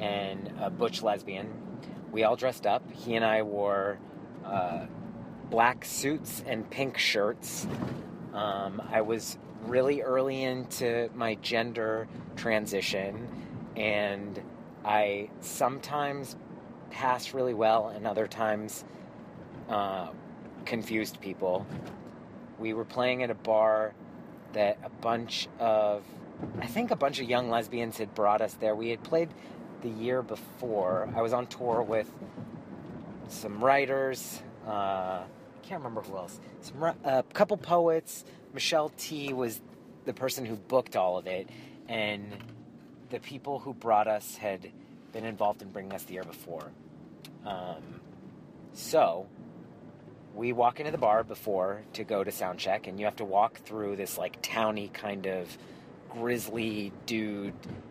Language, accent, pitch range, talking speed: English, American, 105-125 Hz, 140 wpm